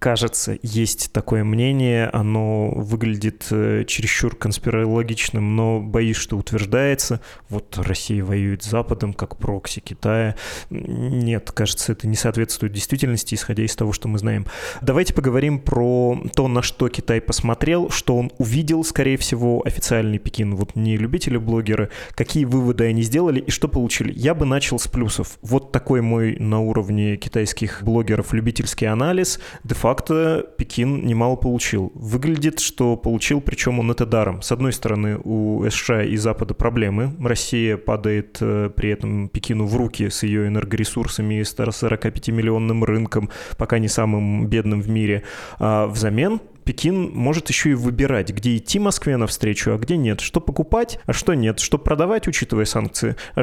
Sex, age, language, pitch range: male, 20-39, Russian, 110-125 Hz